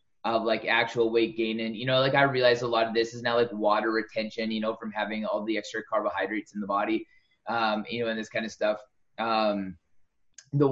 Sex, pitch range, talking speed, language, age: male, 115-130 Hz, 230 wpm, English, 20-39